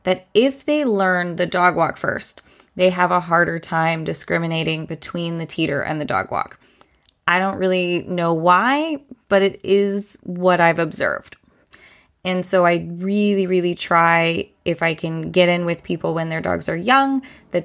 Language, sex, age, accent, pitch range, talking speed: English, female, 10-29, American, 170-200 Hz, 175 wpm